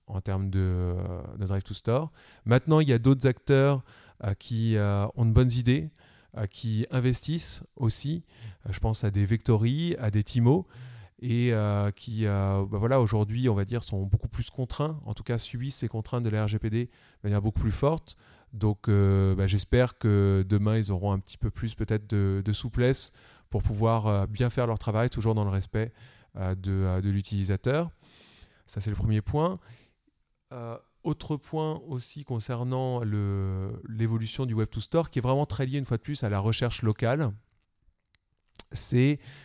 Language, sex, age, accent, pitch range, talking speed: French, male, 20-39, French, 105-130 Hz, 180 wpm